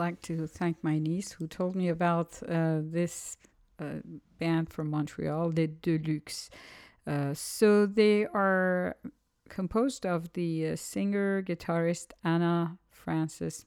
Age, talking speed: 50-69, 125 wpm